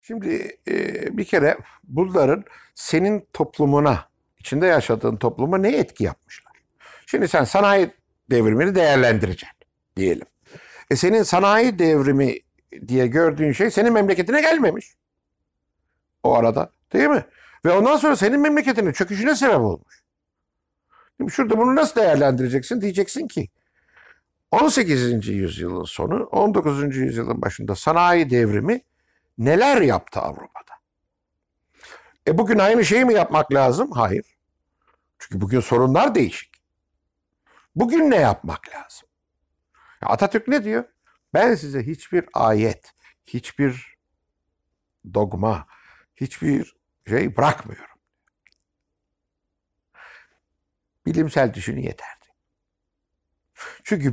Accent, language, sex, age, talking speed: native, Turkish, male, 60-79, 100 wpm